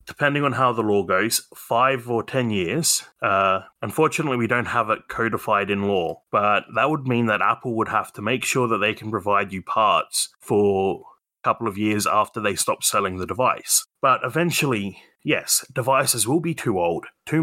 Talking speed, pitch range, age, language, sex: 195 wpm, 115-145 Hz, 30-49, English, male